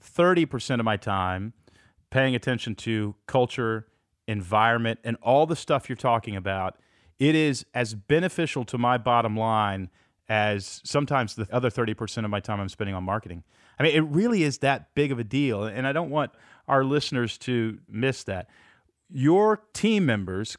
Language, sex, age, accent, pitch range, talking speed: English, male, 30-49, American, 110-145 Hz, 165 wpm